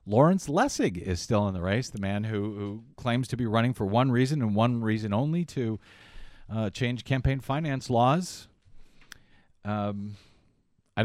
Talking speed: 165 wpm